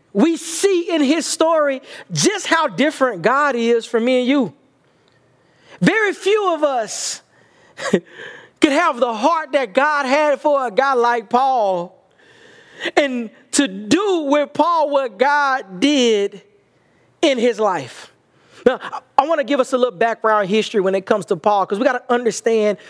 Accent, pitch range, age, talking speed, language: American, 225-310 Hz, 40-59, 160 wpm, English